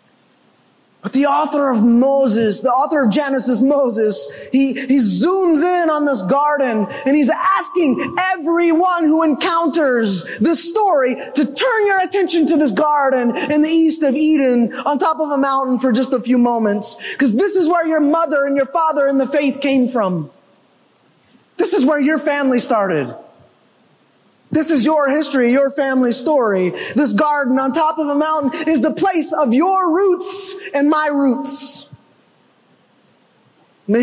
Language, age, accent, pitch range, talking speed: English, 20-39, American, 250-320 Hz, 160 wpm